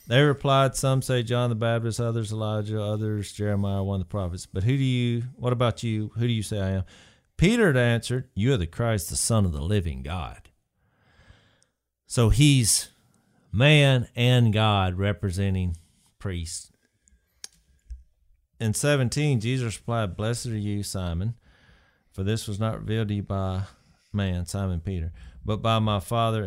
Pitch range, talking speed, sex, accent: 100-145 Hz, 160 wpm, male, American